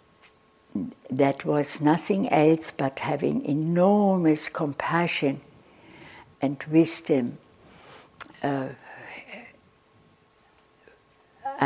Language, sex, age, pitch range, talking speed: English, female, 60-79, 130-165 Hz, 55 wpm